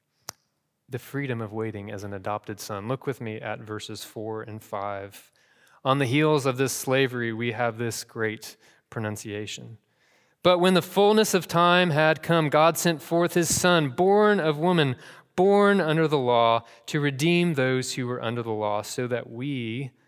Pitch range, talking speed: 110-155 Hz, 175 wpm